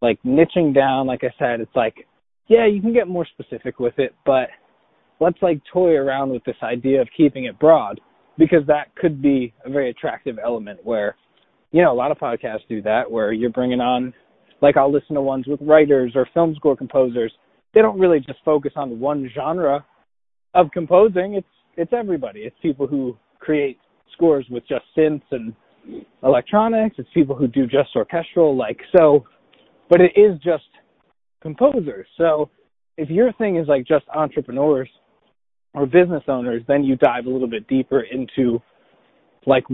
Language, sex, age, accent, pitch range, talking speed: English, male, 20-39, American, 130-165 Hz, 175 wpm